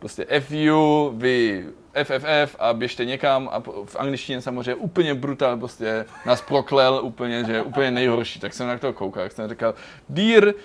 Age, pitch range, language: 20-39, 115-140 Hz, Czech